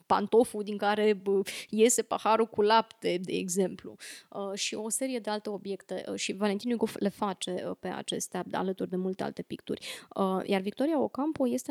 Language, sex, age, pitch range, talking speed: Romanian, female, 20-39, 195-235 Hz, 185 wpm